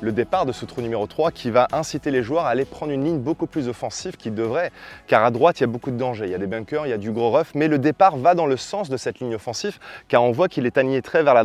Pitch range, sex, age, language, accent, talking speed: 115-145 Hz, male, 20-39, French, French, 325 wpm